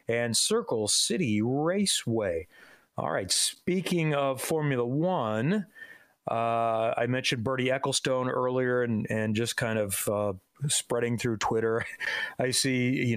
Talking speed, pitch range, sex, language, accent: 130 wpm, 115-160 Hz, male, English, American